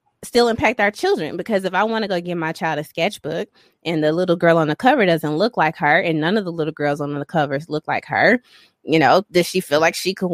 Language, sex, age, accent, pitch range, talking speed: English, female, 20-39, American, 155-215 Hz, 265 wpm